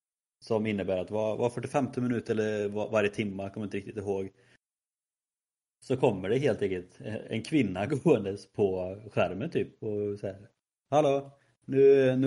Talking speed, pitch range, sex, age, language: 160 wpm, 95-130 Hz, male, 30-49, Swedish